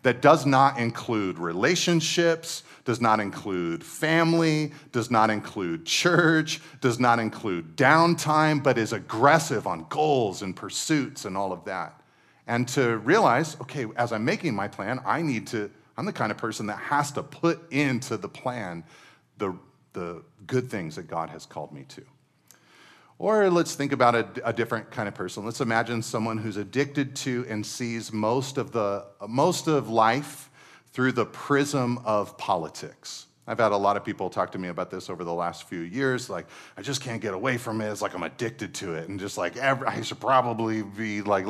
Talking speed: 190 wpm